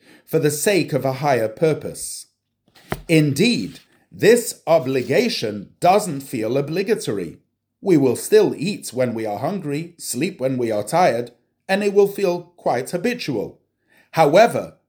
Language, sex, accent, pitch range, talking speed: English, male, British, 125-180 Hz, 135 wpm